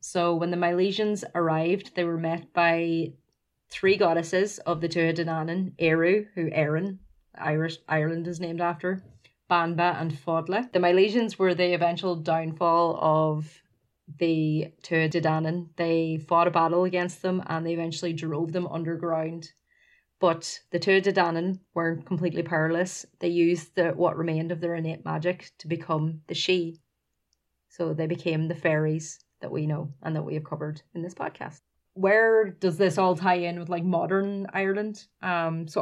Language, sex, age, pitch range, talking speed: English, female, 30-49, 160-180 Hz, 165 wpm